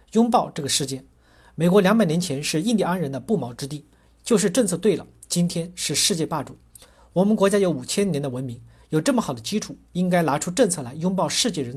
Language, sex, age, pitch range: Chinese, male, 50-69, 140-200 Hz